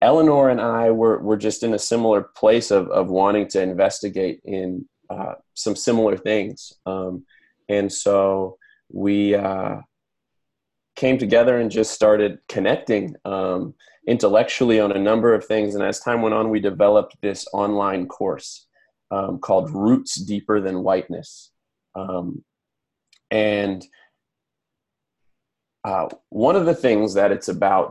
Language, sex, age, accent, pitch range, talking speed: English, male, 30-49, American, 95-110 Hz, 135 wpm